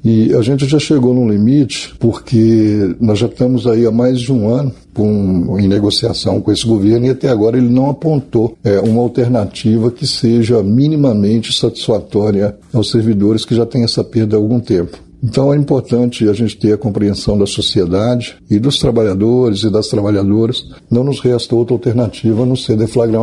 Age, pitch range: 60-79, 110-125 Hz